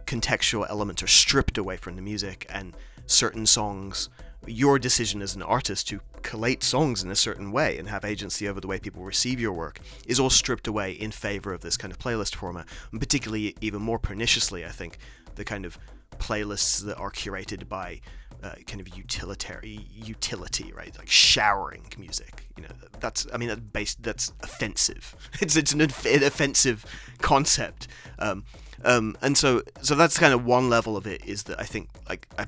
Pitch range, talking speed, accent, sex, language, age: 95-125 Hz, 185 wpm, British, male, English, 30-49